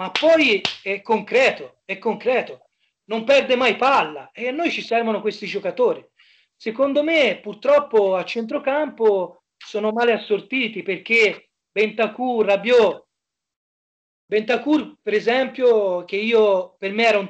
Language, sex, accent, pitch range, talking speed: Italian, male, native, 190-230 Hz, 130 wpm